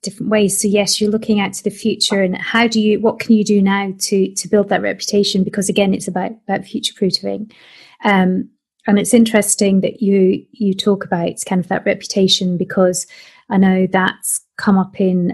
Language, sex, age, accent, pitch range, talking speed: English, female, 30-49, British, 185-210 Hz, 200 wpm